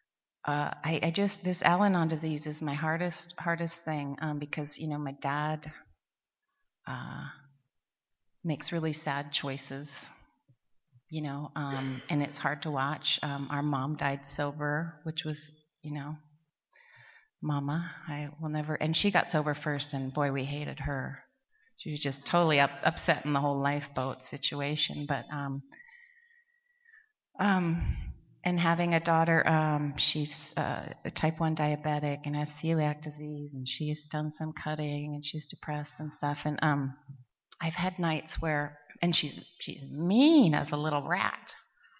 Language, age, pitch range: English, 30-49, 145-175 Hz